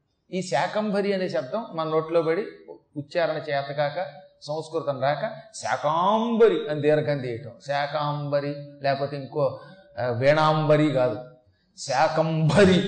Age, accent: 40-59, native